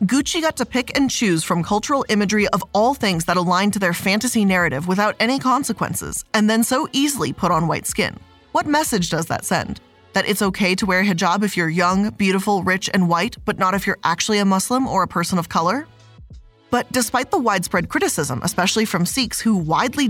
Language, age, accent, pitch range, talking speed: English, 20-39, American, 180-245 Hz, 210 wpm